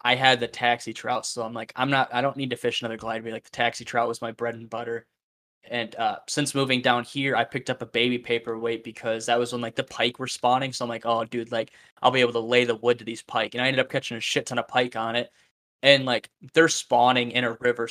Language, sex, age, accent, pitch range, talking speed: English, male, 10-29, American, 115-125 Hz, 275 wpm